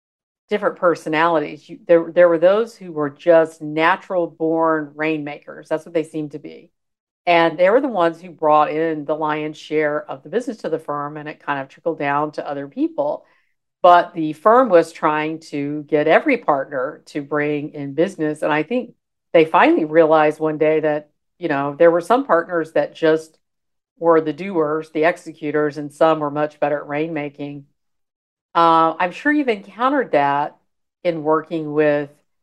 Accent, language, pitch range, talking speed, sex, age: American, English, 150-170 Hz, 175 wpm, female, 50-69